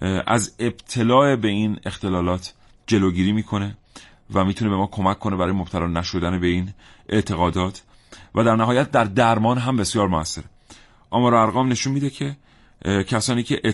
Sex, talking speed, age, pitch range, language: male, 150 wpm, 40-59, 90-115 Hz, Persian